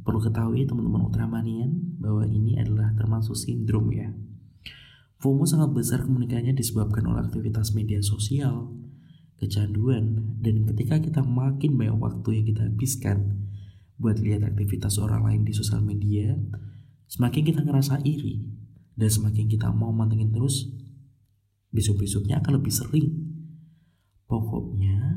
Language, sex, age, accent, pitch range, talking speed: Indonesian, male, 20-39, native, 105-130 Hz, 125 wpm